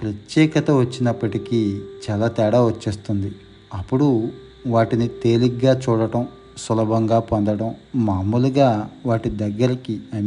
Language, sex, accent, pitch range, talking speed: Telugu, male, native, 105-125 Hz, 90 wpm